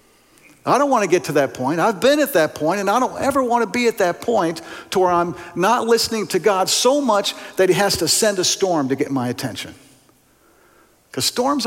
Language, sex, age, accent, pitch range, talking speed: English, male, 50-69, American, 135-220 Hz, 230 wpm